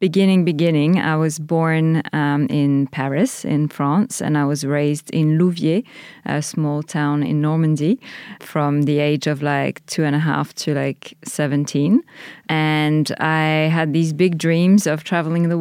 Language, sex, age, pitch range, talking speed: English, female, 20-39, 150-185 Hz, 160 wpm